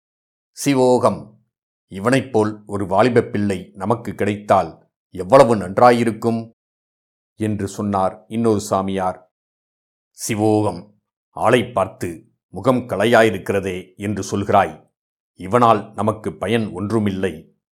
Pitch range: 100-115 Hz